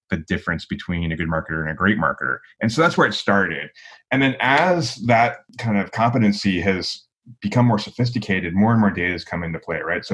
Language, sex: English, male